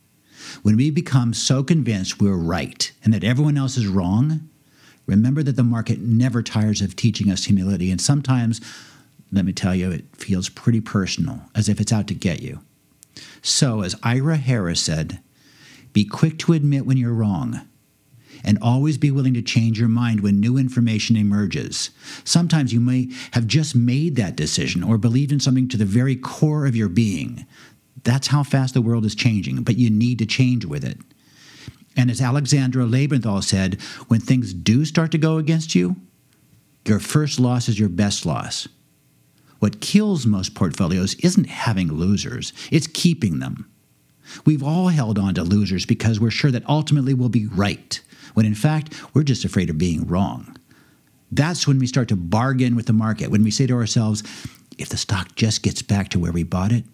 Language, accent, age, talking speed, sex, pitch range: English, American, 60-79, 185 wpm, male, 105-140 Hz